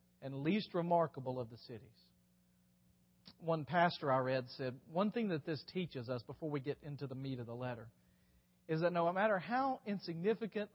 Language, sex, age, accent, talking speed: English, male, 40-59, American, 180 wpm